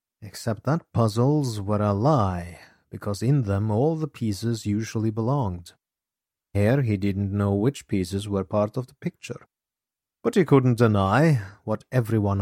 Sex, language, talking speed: male, English, 150 wpm